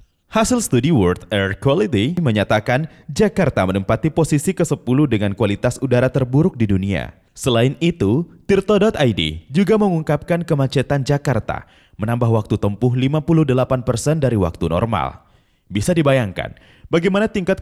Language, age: Indonesian, 20-39